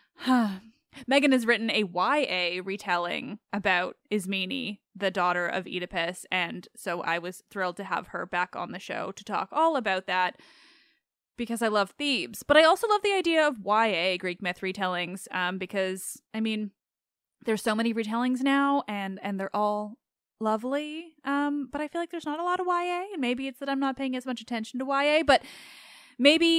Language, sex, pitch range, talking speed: English, female, 200-280 Hz, 190 wpm